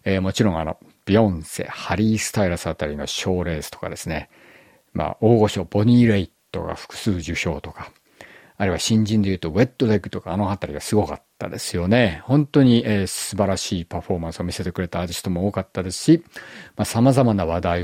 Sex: male